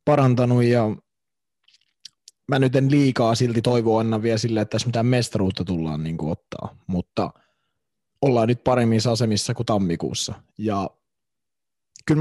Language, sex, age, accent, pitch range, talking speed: Finnish, male, 20-39, native, 95-120 Hz, 130 wpm